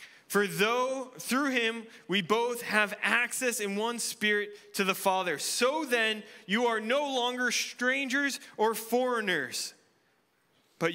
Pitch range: 135-205 Hz